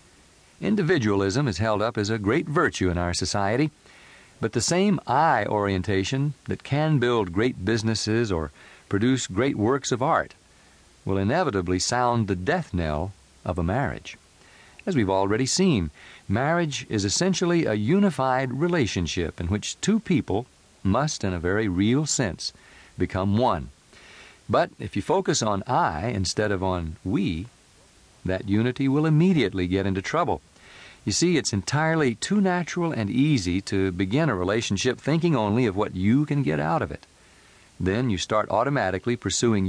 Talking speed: 155 wpm